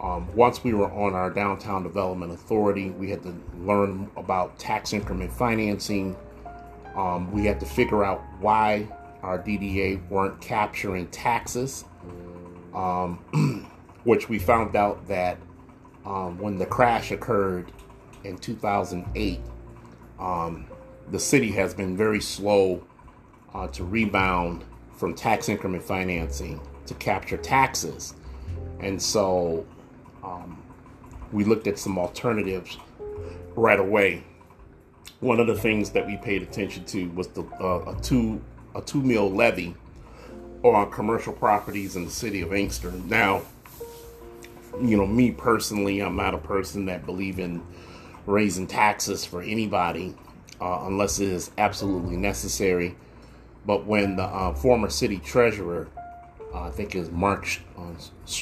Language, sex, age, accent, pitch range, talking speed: English, male, 30-49, American, 90-105 Hz, 135 wpm